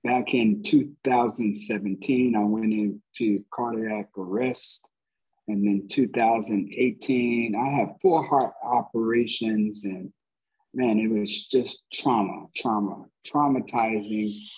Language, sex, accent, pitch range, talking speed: English, male, American, 105-140 Hz, 100 wpm